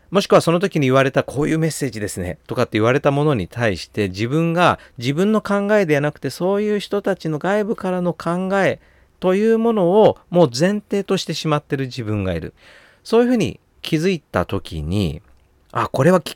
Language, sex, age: Japanese, male, 40-59